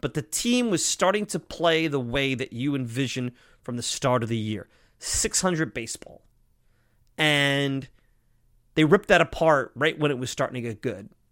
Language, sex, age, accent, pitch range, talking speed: English, male, 30-49, American, 125-175 Hz, 180 wpm